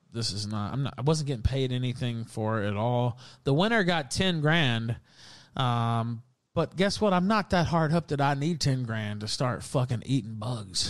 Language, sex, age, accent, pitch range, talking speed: English, male, 30-49, American, 110-135 Hz, 205 wpm